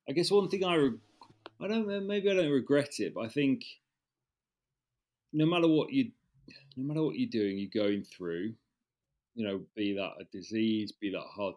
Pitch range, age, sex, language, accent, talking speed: 100-125 Hz, 40-59, male, English, British, 190 wpm